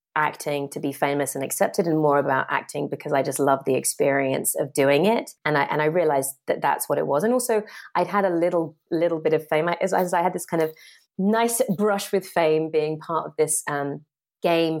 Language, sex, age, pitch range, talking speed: English, female, 30-49, 150-180 Hz, 225 wpm